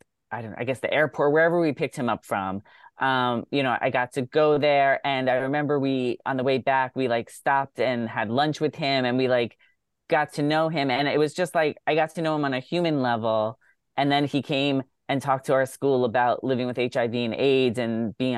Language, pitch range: English, 120-145 Hz